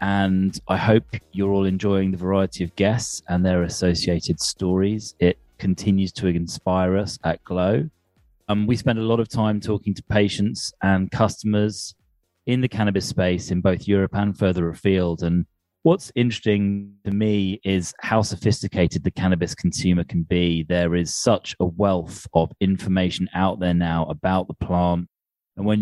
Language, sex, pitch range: English, male, 90-105 Hz